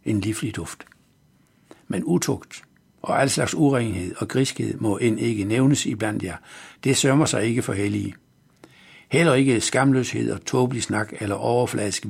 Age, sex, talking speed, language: 60-79, male, 155 wpm, Danish